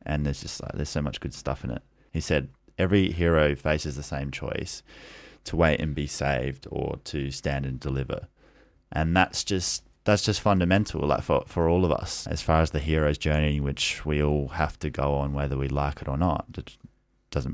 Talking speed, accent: 210 wpm, Australian